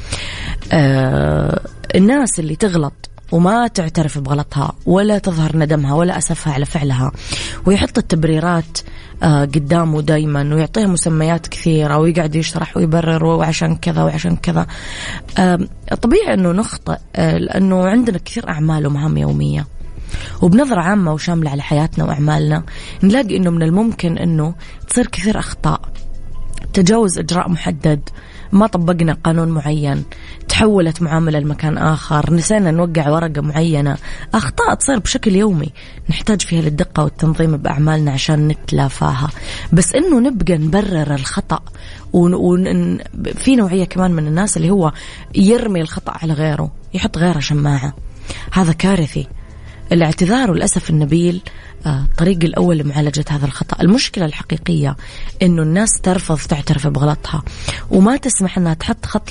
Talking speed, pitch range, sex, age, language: 120 wpm, 145-180 Hz, female, 20-39, English